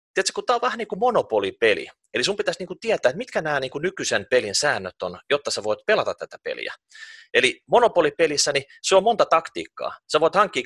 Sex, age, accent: male, 30-49, native